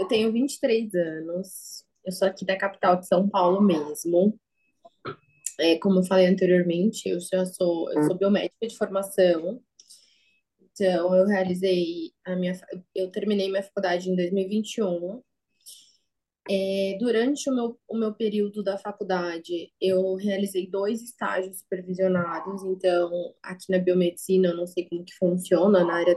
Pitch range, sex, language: 180-215 Hz, female, Portuguese